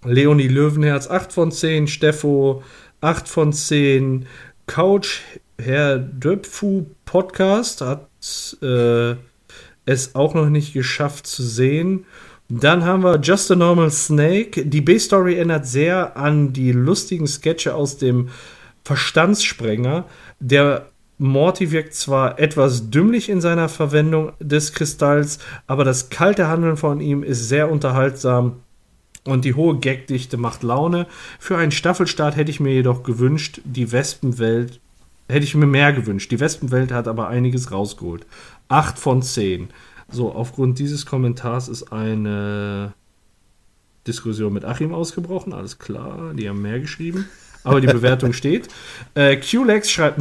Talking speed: 135 wpm